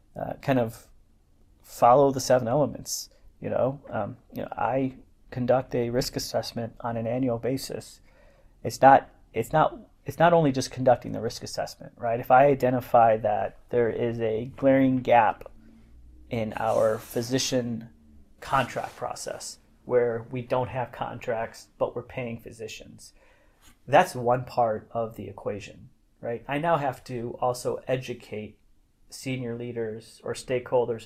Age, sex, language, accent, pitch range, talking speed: 30-49, male, English, American, 110-130 Hz, 145 wpm